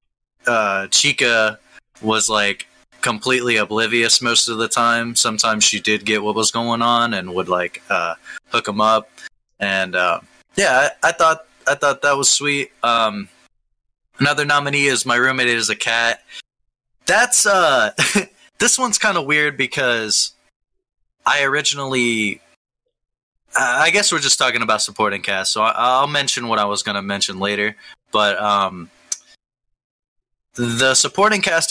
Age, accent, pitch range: 20-39, American, 100-120 Hz